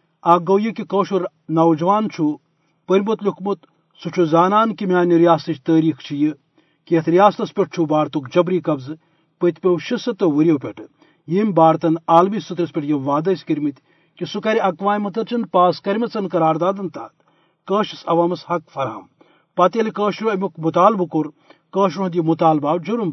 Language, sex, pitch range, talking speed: Urdu, male, 160-195 Hz, 170 wpm